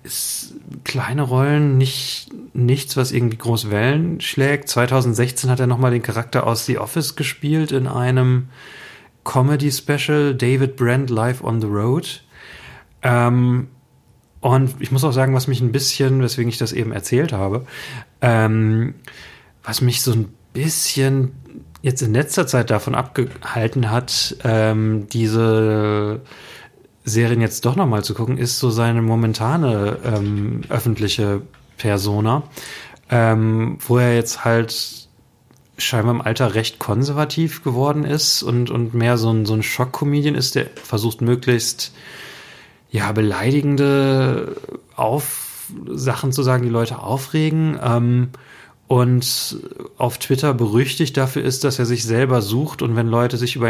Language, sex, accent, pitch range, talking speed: German, male, German, 115-135 Hz, 135 wpm